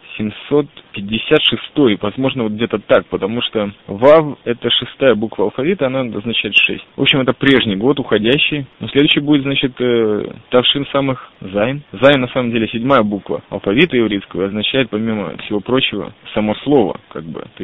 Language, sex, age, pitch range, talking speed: Russian, male, 20-39, 105-130 Hz, 165 wpm